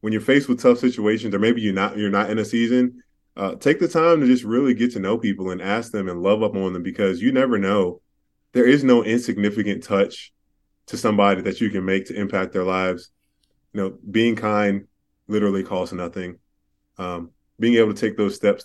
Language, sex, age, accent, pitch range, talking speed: English, male, 20-39, American, 95-110 Hz, 215 wpm